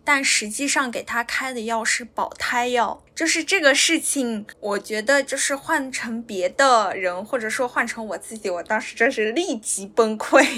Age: 10-29